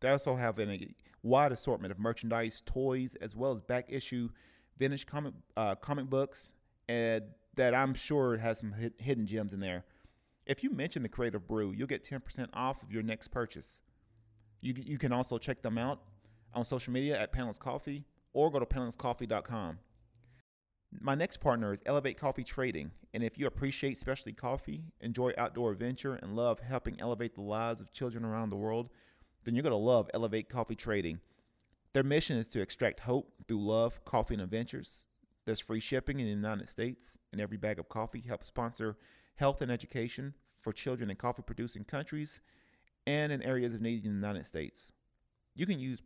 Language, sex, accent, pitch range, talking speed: English, male, American, 110-130 Hz, 180 wpm